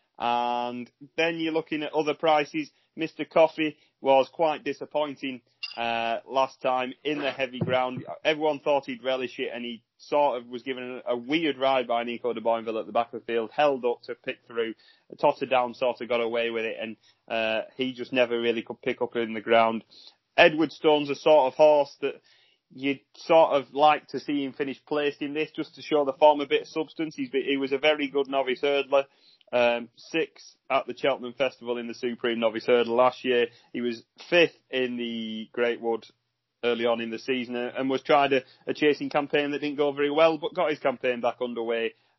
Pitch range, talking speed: 120-150 Hz, 205 wpm